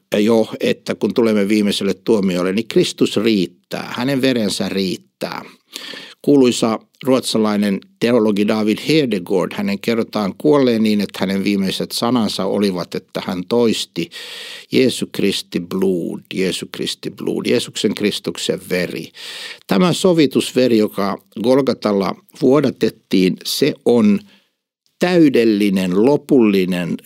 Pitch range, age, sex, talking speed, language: 100-150 Hz, 60-79, male, 105 wpm, Finnish